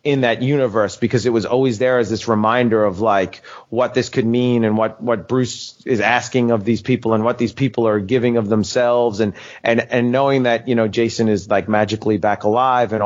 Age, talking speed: 30-49, 220 wpm